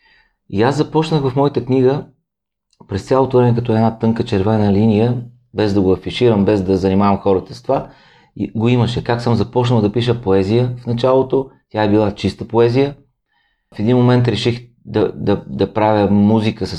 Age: 30-49